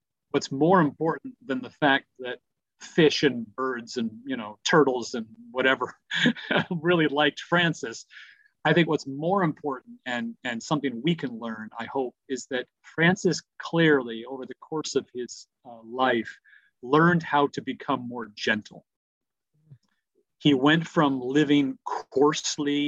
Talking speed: 140 wpm